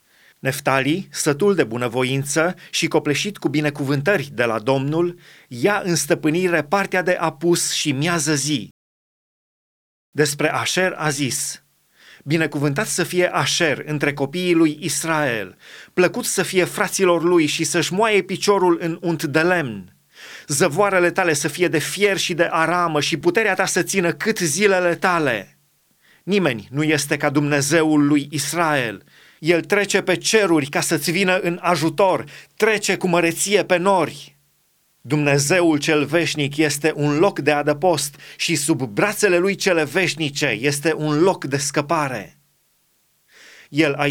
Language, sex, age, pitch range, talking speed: Romanian, male, 30-49, 150-180 Hz, 140 wpm